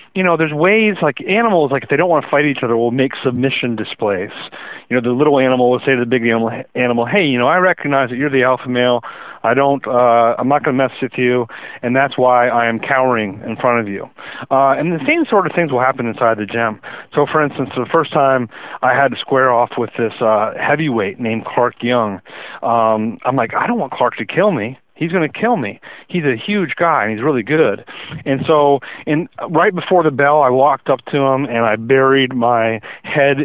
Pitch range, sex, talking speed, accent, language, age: 120-150 Hz, male, 235 wpm, American, English, 30-49